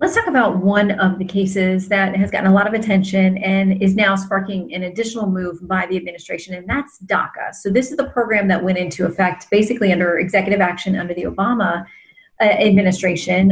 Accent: American